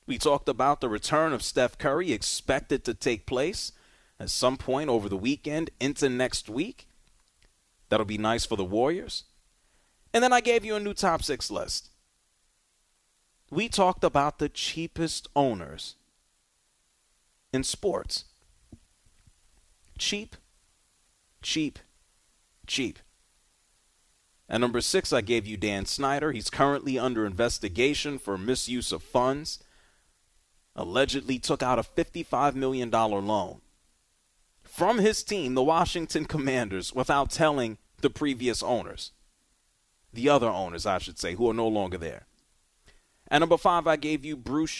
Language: English